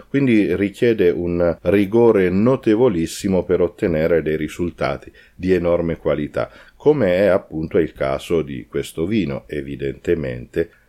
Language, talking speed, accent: Italian, 115 wpm, native